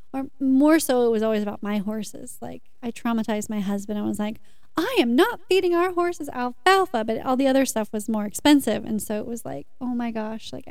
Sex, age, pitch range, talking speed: female, 30-49, 220-270 Hz, 230 wpm